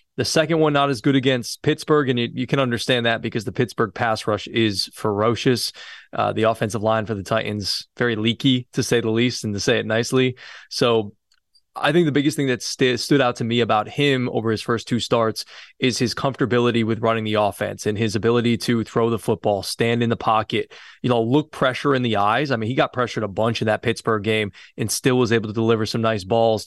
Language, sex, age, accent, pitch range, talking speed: English, male, 20-39, American, 110-125 Hz, 230 wpm